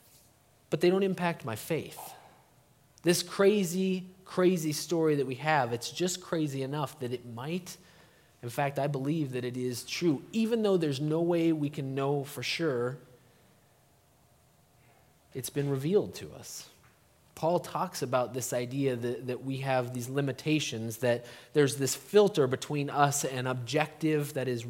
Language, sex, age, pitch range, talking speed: English, male, 30-49, 135-165 Hz, 155 wpm